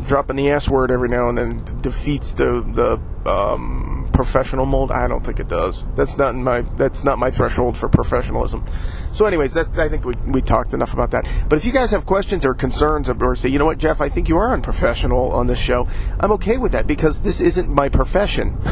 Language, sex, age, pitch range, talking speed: English, male, 40-59, 125-155 Hz, 230 wpm